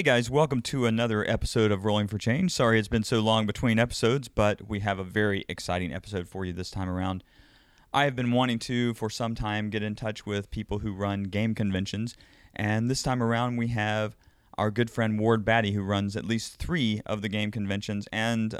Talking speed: 215 wpm